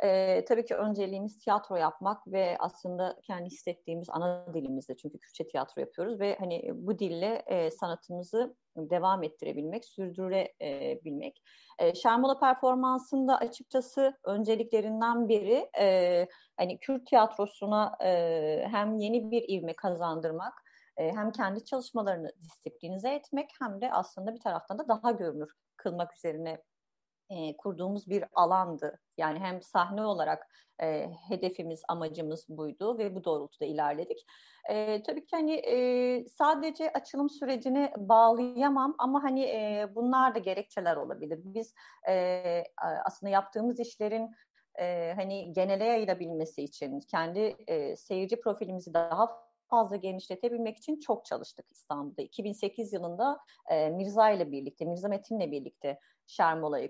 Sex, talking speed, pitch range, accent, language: female, 130 wpm, 175-235 Hz, native, Turkish